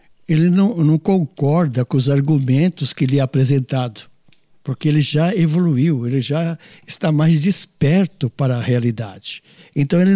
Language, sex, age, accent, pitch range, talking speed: Portuguese, male, 60-79, Brazilian, 130-165 Hz, 150 wpm